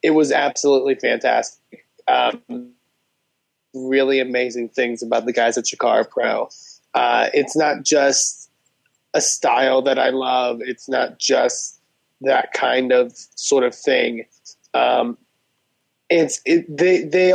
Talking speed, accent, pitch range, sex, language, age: 130 wpm, American, 130-165 Hz, male, English, 20-39